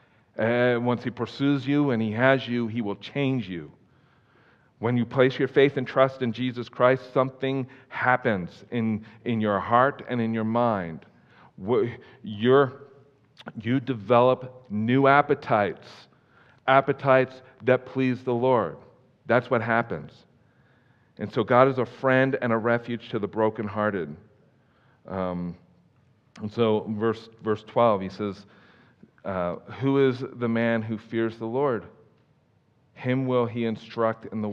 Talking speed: 135 wpm